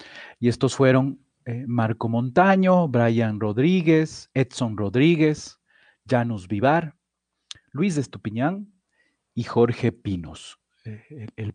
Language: Spanish